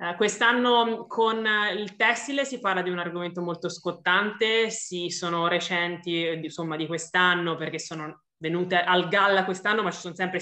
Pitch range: 170-195 Hz